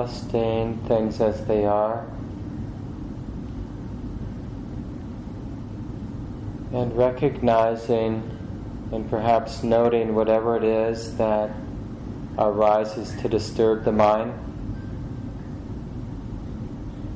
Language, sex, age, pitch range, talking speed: English, male, 20-39, 105-115 Hz, 65 wpm